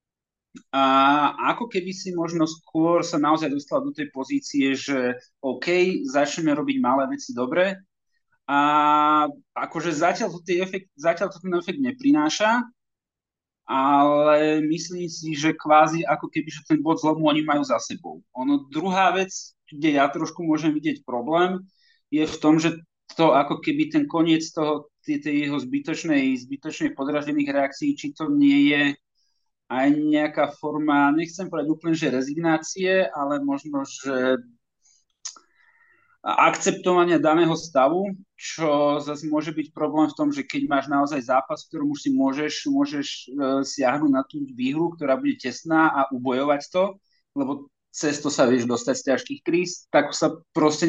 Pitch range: 145-220 Hz